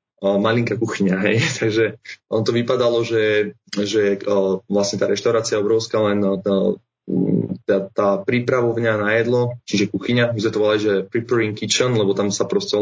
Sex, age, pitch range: male, 20-39, 100-115 Hz